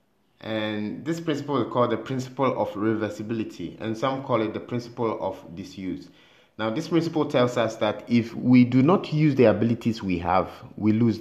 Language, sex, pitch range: English, male, 105-135 Hz